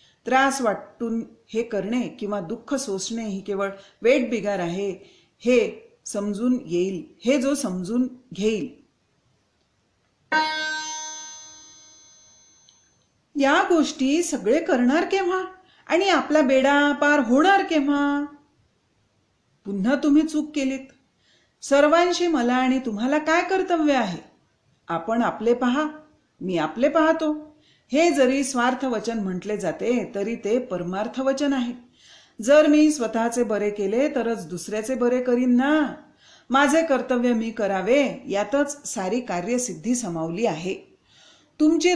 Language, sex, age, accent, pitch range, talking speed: Marathi, female, 40-59, native, 205-290 Hz, 90 wpm